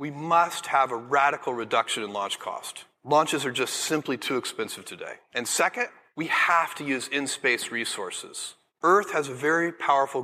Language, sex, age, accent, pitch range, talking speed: English, male, 30-49, American, 135-170 Hz, 170 wpm